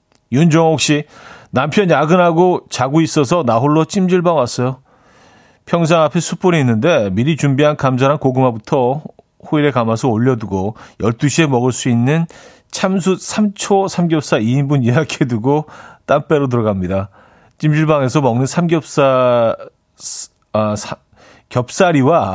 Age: 40-59